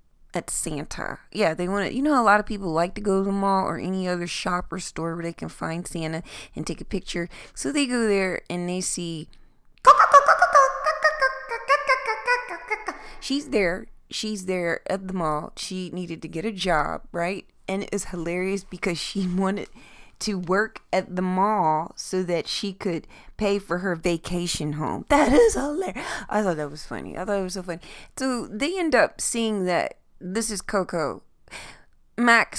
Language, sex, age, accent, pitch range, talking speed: English, female, 20-39, American, 170-215 Hz, 180 wpm